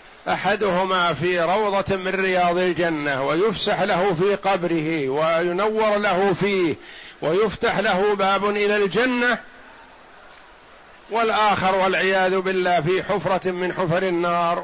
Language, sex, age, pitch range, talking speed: Arabic, male, 50-69, 170-195 Hz, 105 wpm